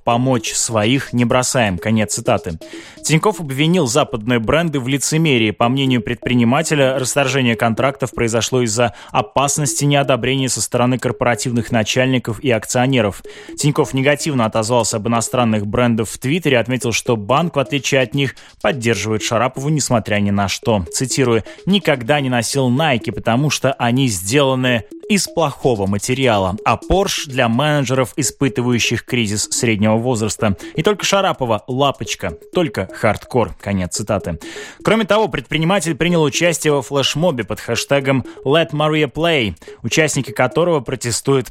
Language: Russian